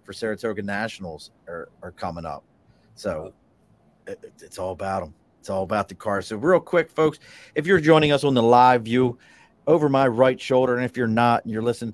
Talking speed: 200 wpm